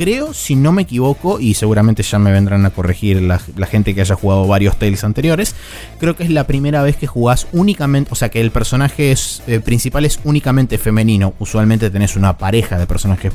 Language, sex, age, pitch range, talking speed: Spanish, male, 20-39, 100-135 Hz, 205 wpm